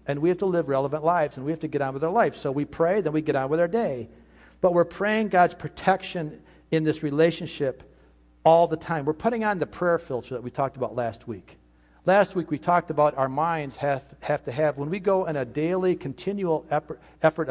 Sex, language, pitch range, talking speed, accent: male, English, 130-170 Hz, 235 wpm, American